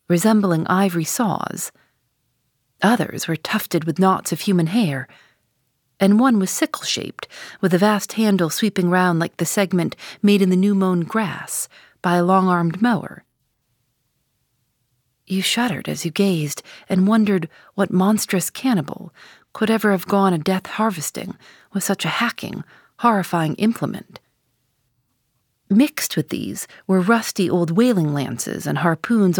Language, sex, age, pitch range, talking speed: English, female, 40-59, 155-215 Hz, 135 wpm